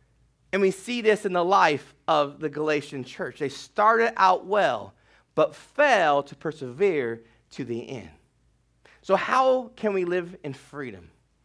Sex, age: male, 30-49